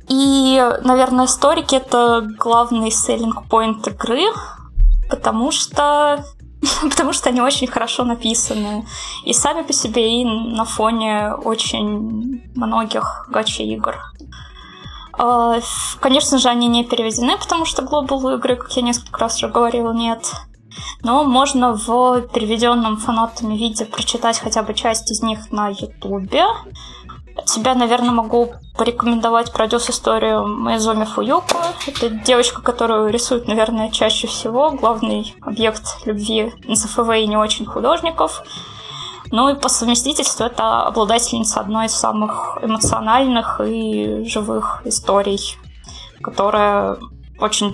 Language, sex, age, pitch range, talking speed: Russian, female, 10-29, 220-255 Hz, 120 wpm